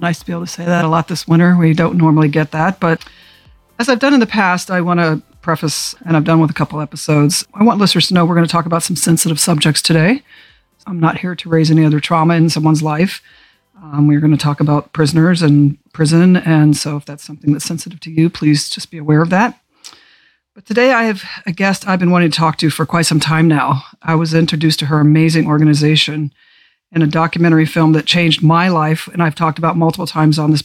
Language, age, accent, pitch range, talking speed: English, 50-69, American, 155-185 Hz, 240 wpm